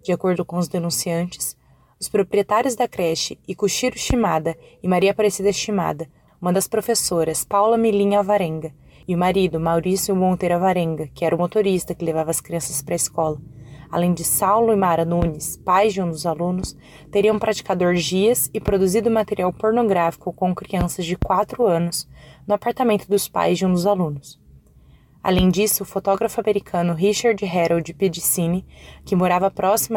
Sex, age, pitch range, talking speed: female, 20-39, 170-205 Hz, 160 wpm